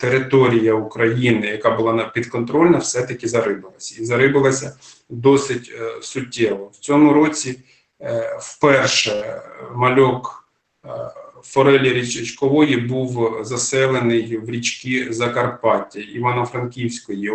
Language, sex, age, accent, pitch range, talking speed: Ukrainian, male, 40-59, native, 120-140 Hz, 95 wpm